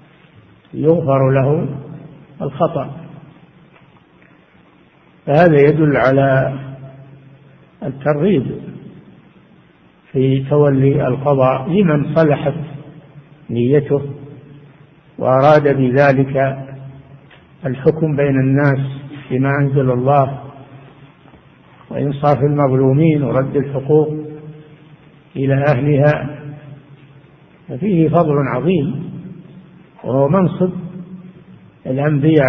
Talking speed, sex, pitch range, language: 60 wpm, male, 135-155 Hz, Arabic